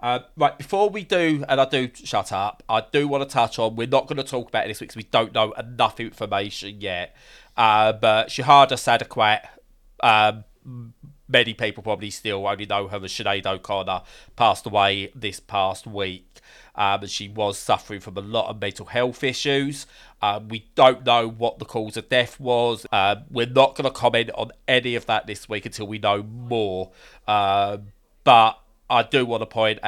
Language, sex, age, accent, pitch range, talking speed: English, male, 30-49, British, 105-125 Hz, 195 wpm